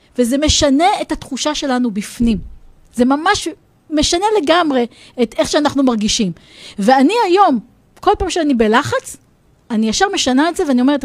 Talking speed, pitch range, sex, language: 145 wpm, 245-365 Hz, female, Hebrew